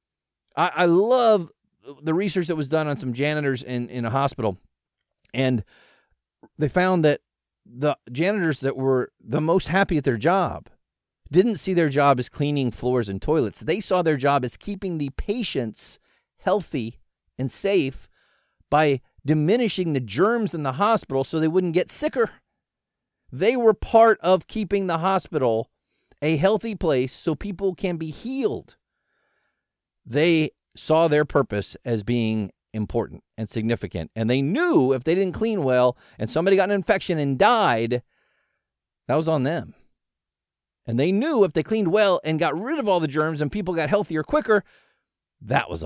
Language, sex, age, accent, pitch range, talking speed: English, male, 40-59, American, 125-190 Hz, 160 wpm